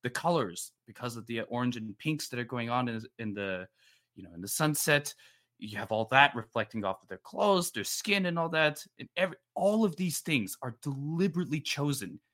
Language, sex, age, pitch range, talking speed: English, male, 20-39, 100-130 Hz, 210 wpm